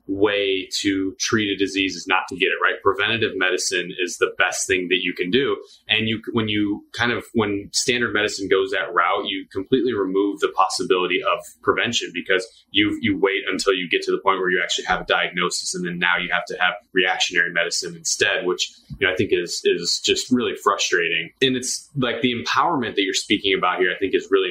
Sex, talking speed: male, 220 wpm